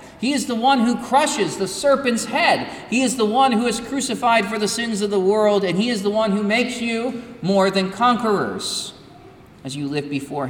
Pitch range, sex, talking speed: 195-245 Hz, male, 210 wpm